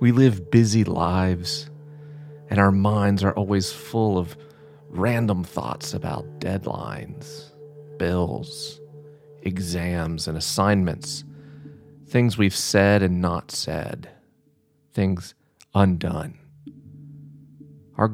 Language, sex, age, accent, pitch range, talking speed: English, male, 40-59, American, 95-145 Hz, 95 wpm